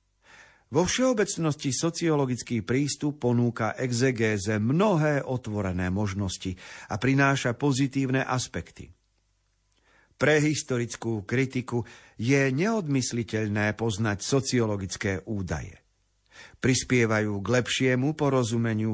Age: 50-69